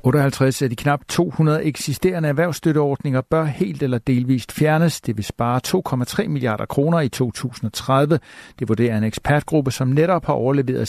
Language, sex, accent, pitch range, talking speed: Danish, male, native, 120-145 Hz, 155 wpm